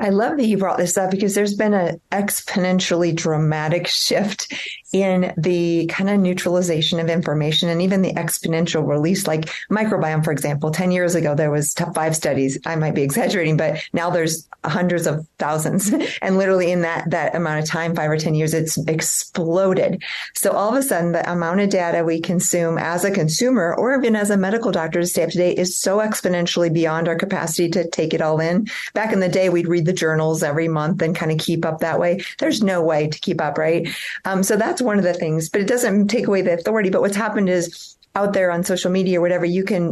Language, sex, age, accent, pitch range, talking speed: English, female, 40-59, American, 165-190 Hz, 225 wpm